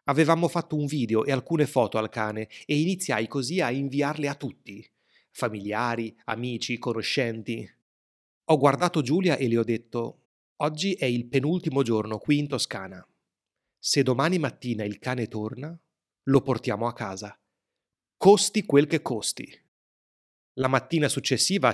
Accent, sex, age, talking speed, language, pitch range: native, male, 30-49, 140 wpm, Italian, 115-145 Hz